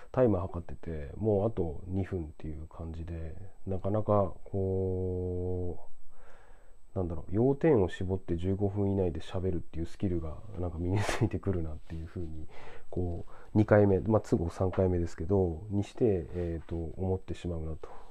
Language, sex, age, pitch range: Japanese, male, 40-59, 85-105 Hz